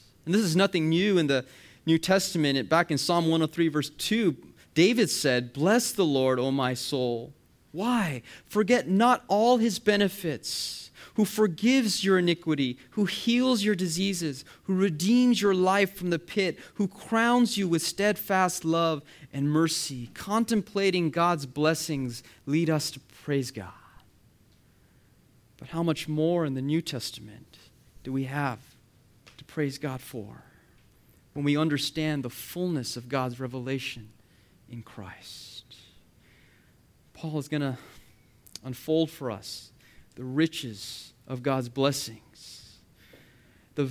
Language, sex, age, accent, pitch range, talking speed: English, male, 30-49, American, 125-180 Hz, 135 wpm